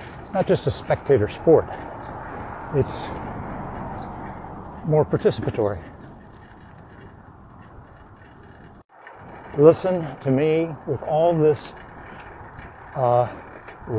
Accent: American